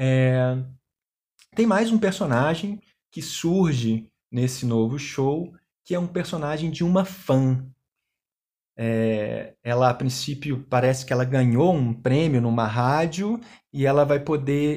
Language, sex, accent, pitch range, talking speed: Portuguese, male, Brazilian, 120-155 Hz, 125 wpm